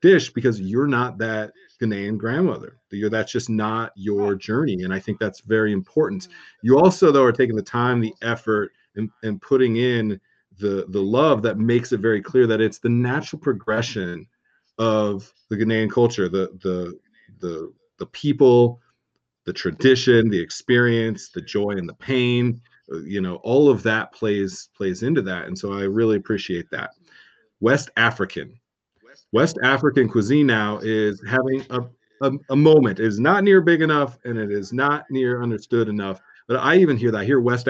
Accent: American